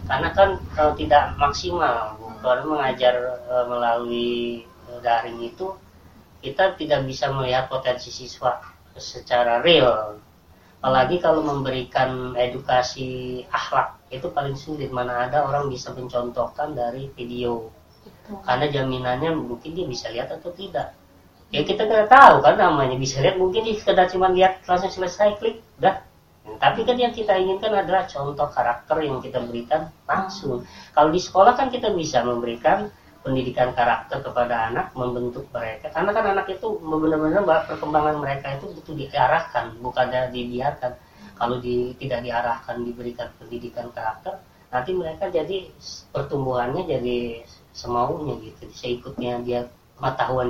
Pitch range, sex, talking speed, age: 120-155 Hz, female, 130 wpm, 20-39